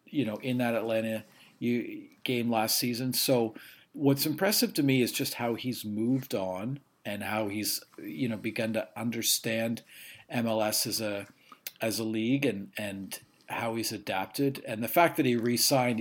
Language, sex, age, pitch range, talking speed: English, male, 40-59, 110-130 Hz, 170 wpm